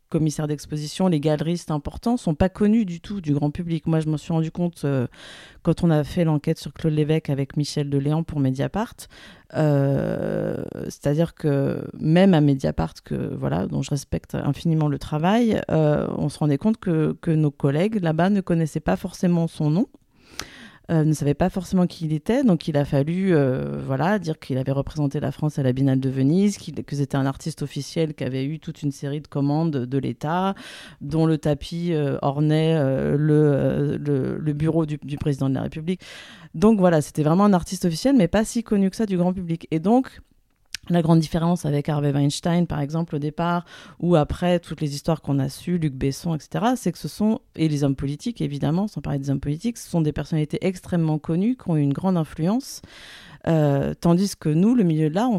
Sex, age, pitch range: female, 30-49, 145-180 Hz